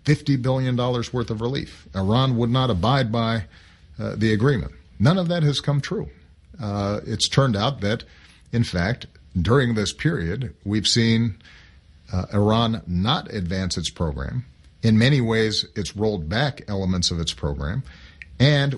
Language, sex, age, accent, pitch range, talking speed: English, male, 50-69, American, 80-125 Hz, 150 wpm